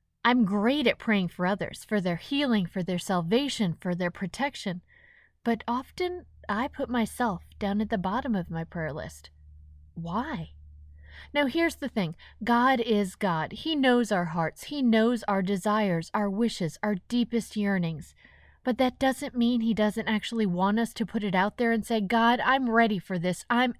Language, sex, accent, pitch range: English, female, American, 200-270 Hz